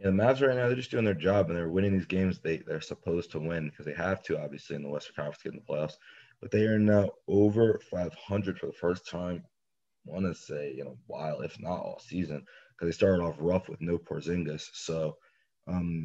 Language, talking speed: English, 240 wpm